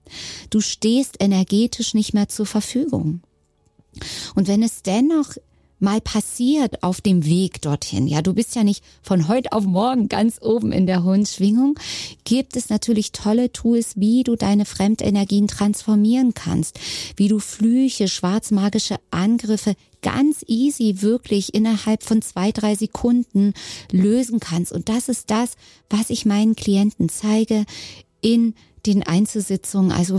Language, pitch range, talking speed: German, 180-220 Hz, 140 wpm